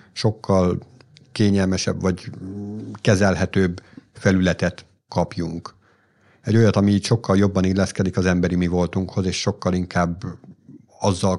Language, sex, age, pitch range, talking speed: Hungarian, male, 50-69, 95-120 Hz, 110 wpm